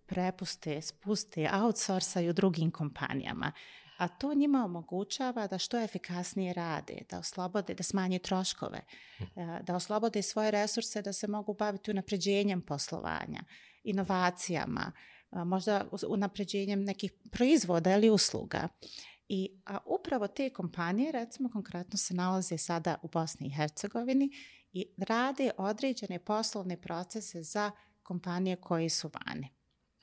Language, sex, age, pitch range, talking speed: English, female, 30-49, 175-215 Hz, 120 wpm